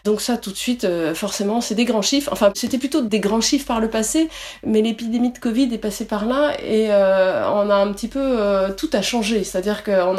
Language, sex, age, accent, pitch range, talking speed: French, female, 30-49, French, 195-265 Hz, 240 wpm